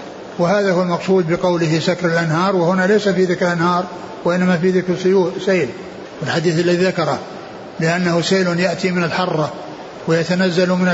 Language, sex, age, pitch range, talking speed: Arabic, male, 60-79, 170-190 Hz, 135 wpm